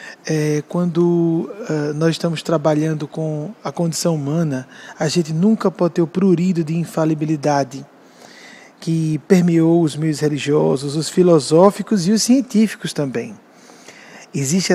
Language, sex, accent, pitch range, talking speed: Portuguese, male, Brazilian, 155-195 Hz, 120 wpm